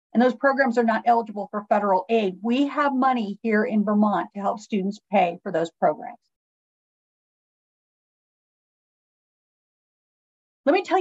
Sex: female